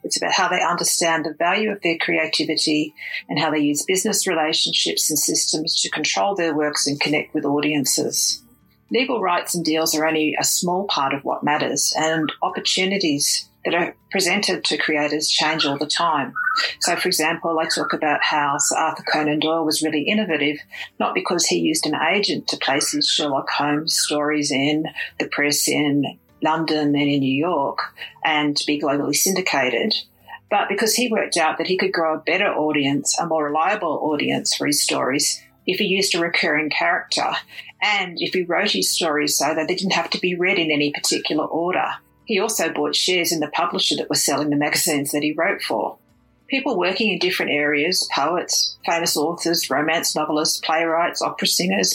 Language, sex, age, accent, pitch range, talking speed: English, female, 50-69, Australian, 150-180 Hz, 185 wpm